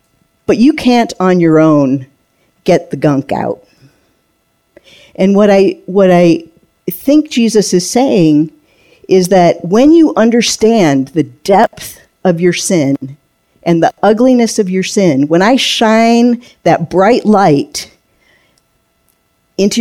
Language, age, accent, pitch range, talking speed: English, 50-69, American, 150-195 Hz, 125 wpm